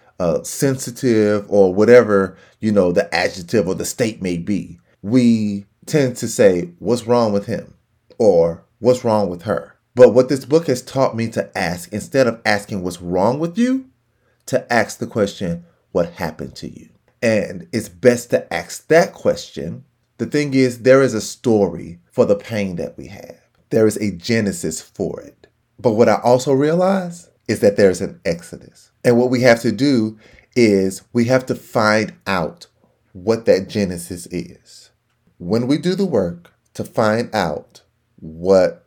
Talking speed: 170 wpm